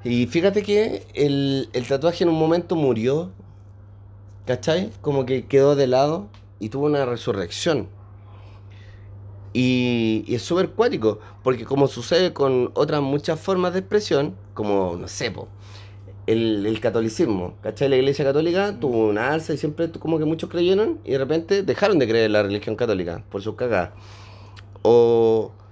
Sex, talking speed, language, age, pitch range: male, 155 wpm, Spanish, 30-49, 100-140 Hz